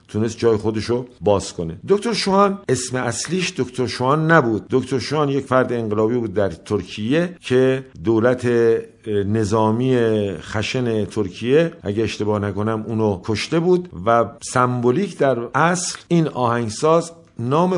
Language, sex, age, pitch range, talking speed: Persian, male, 50-69, 105-135 Hz, 130 wpm